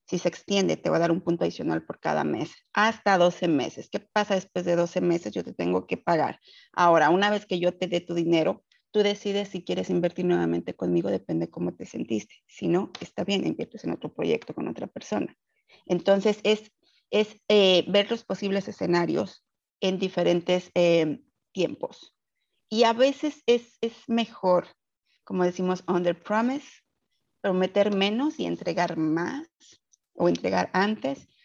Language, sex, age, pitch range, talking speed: Spanish, female, 30-49, 170-210 Hz, 170 wpm